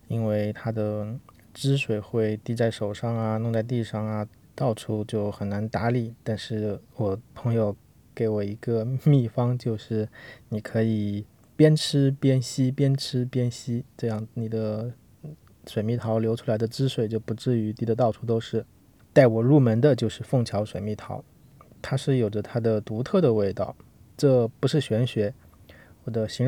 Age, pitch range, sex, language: 20-39, 110-130 Hz, male, Chinese